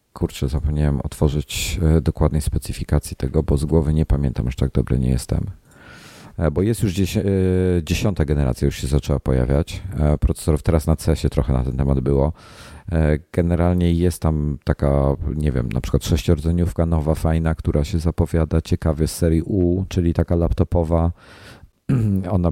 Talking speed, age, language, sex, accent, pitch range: 150 wpm, 40-59, Polish, male, native, 70-85 Hz